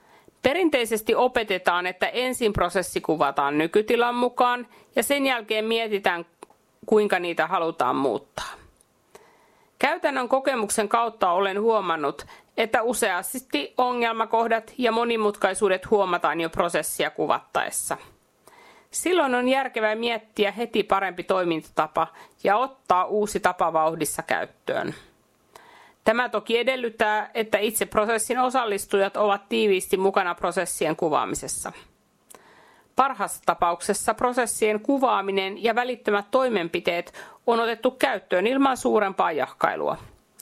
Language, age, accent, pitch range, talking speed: Finnish, 50-69, native, 195-245 Hz, 100 wpm